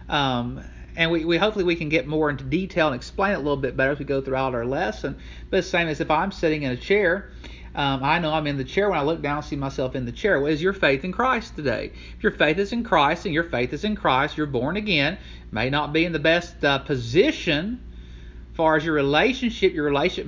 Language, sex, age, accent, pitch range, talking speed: English, male, 40-59, American, 125-175 Hz, 260 wpm